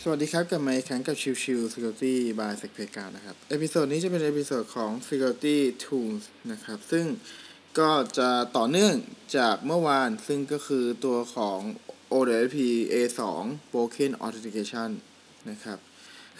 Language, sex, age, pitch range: Thai, male, 20-39, 125-160 Hz